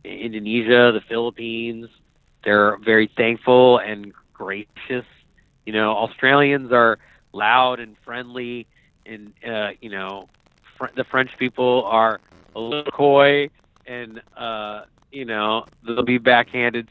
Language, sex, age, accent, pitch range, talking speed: English, male, 30-49, American, 110-125 Hz, 120 wpm